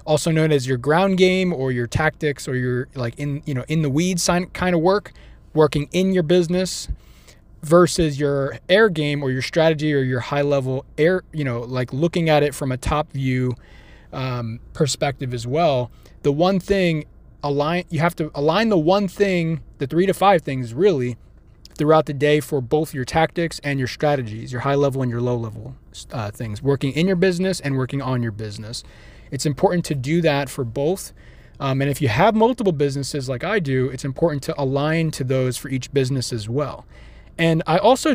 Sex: male